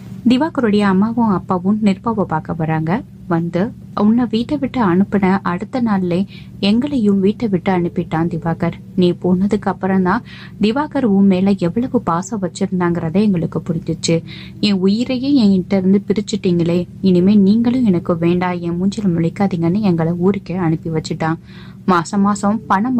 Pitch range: 175-215 Hz